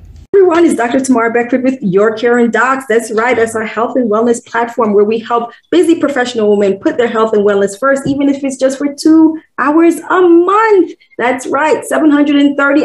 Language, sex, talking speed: English, female, 195 wpm